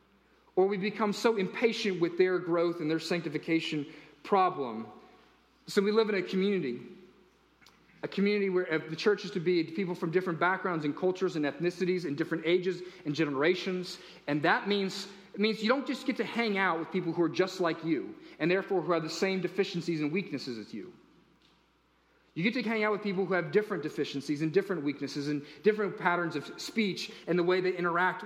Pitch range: 170-225 Hz